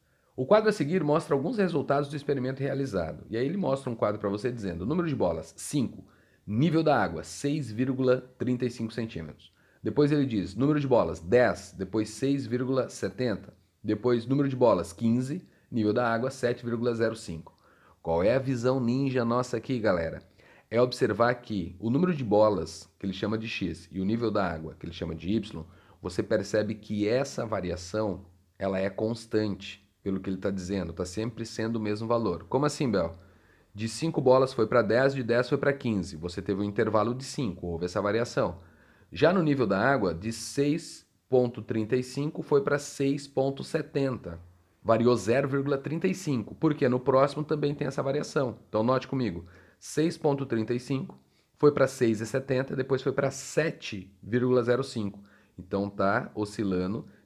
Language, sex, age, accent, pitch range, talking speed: Portuguese, male, 30-49, Brazilian, 100-135 Hz, 160 wpm